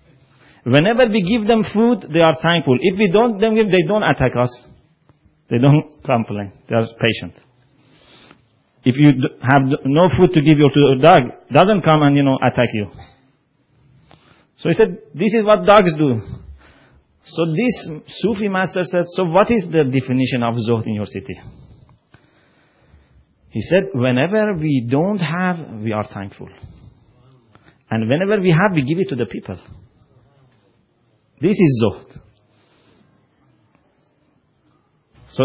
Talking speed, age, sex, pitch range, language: 145 wpm, 40-59, male, 120-170 Hz, English